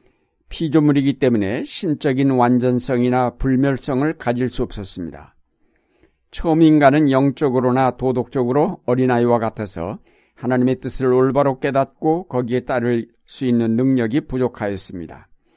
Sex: male